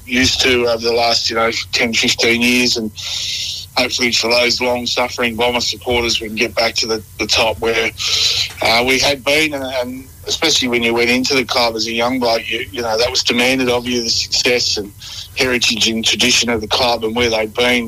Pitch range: 110-130 Hz